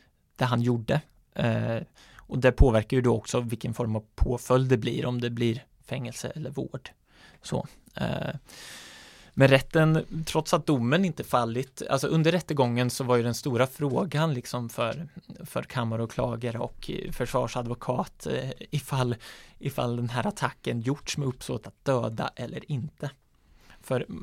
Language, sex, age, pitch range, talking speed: Swedish, male, 20-39, 120-145 Hz, 150 wpm